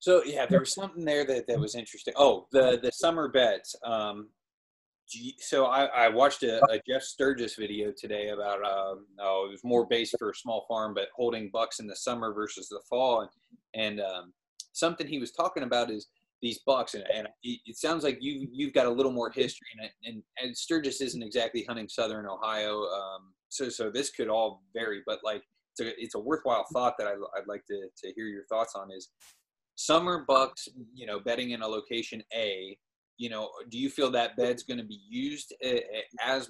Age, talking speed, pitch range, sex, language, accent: 20-39, 205 wpm, 110-140 Hz, male, English, American